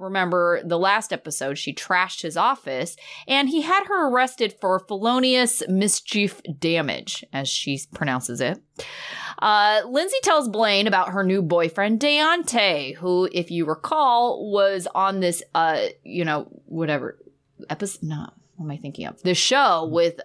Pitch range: 175-290 Hz